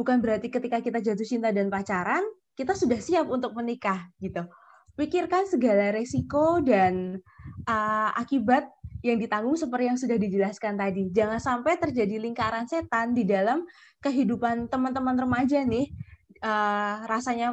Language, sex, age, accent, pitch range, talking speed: Indonesian, female, 20-39, native, 215-270 Hz, 135 wpm